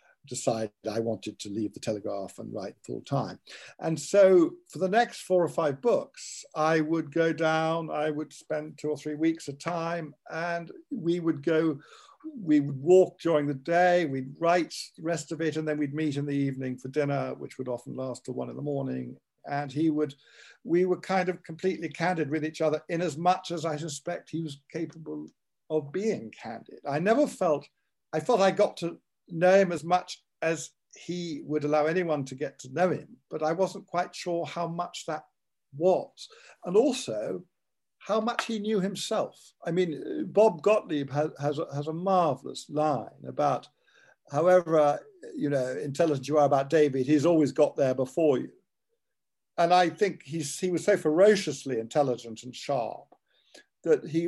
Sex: male